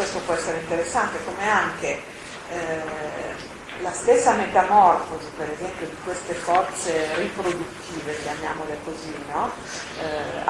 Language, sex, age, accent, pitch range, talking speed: Italian, female, 40-59, native, 155-175 Hz, 115 wpm